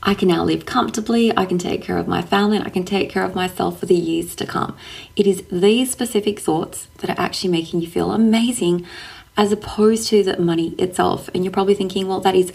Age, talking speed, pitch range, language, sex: 20-39, 235 wpm, 170-200 Hz, English, female